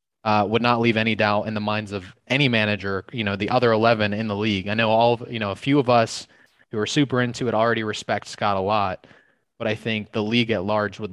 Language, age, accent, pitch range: English, 20-39, American, 105-125 Hz